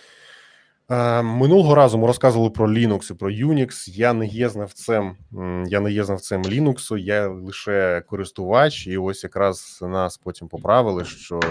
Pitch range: 90-120 Hz